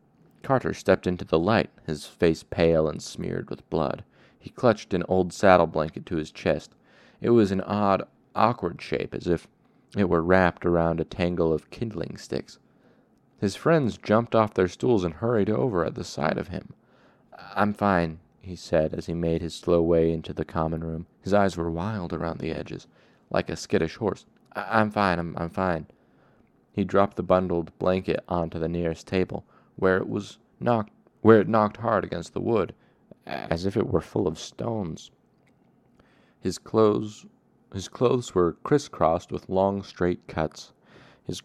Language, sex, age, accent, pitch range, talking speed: English, male, 30-49, American, 85-105 Hz, 175 wpm